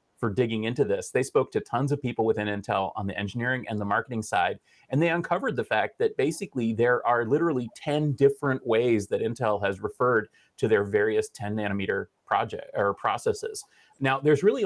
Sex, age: male, 30-49